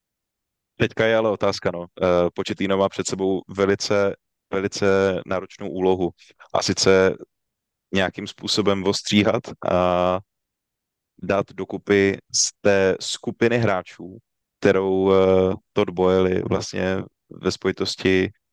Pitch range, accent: 90-100 Hz, native